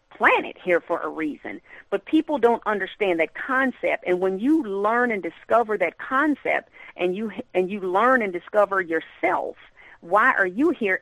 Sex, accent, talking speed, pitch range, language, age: female, American, 170 wpm, 180-290 Hz, English, 40-59